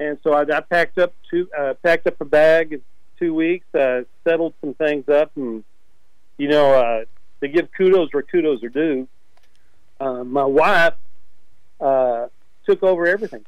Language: English